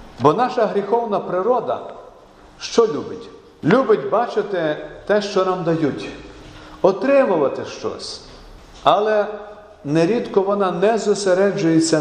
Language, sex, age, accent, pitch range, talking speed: Ukrainian, male, 50-69, native, 130-190 Hz, 95 wpm